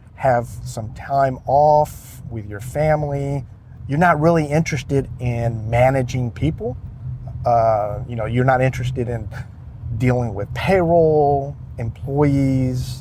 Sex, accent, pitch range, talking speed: male, American, 115-140 Hz, 115 wpm